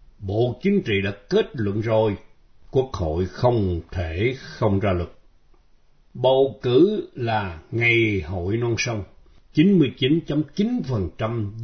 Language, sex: Vietnamese, male